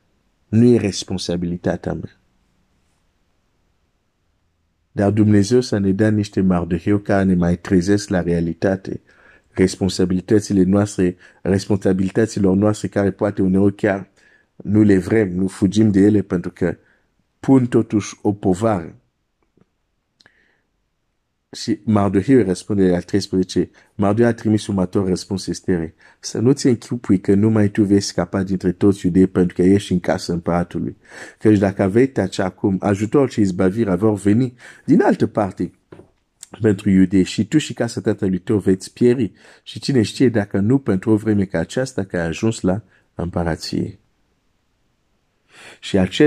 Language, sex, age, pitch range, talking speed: Romanian, male, 50-69, 90-110 Hz, 120 wpm